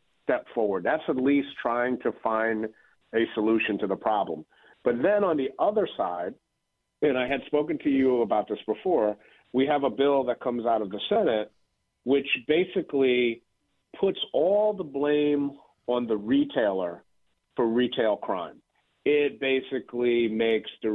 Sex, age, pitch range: male, 50-69, 110-140 Hz